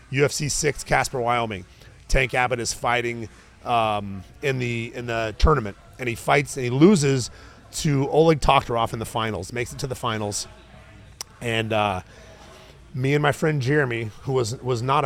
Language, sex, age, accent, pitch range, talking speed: English, male, 30-49, American, 110-135 Hz, 165 wpm